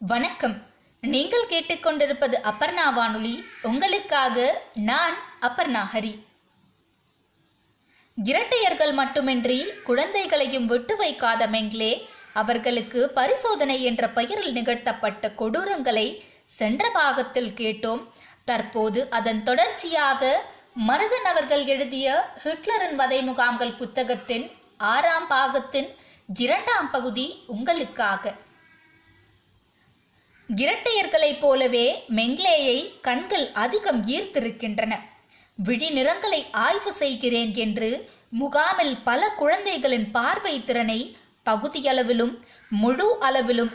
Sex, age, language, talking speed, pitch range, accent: female, 20-39, Tamil, 65 wpm, 230-290 Hz, native